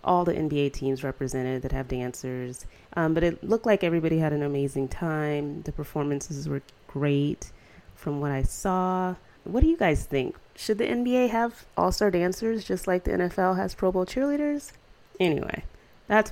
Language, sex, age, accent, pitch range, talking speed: English, female, 30-49, American, 145-185 Hz, 175 wpm